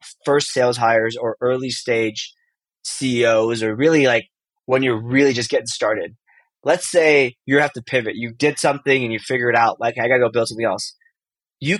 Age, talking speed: 20-39, 200 wpm